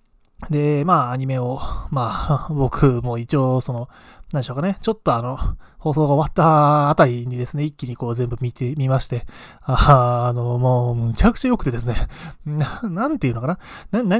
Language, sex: Japanese, male